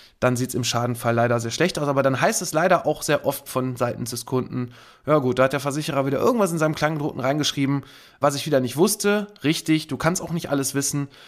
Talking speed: 240 wpm